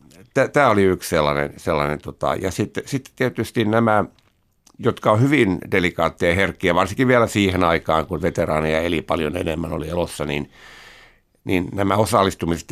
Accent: native